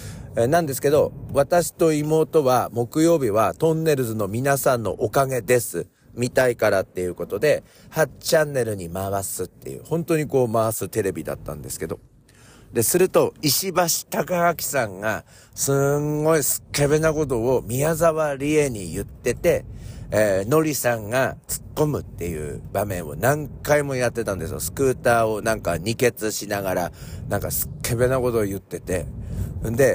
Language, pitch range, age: Japanese, 100-145 Hz, 50-69